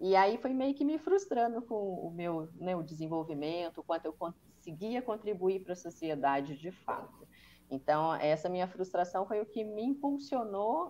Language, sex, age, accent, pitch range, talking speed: Portuguese, female, 20-39, Brazilian, 160-240 Hz, 170 wpm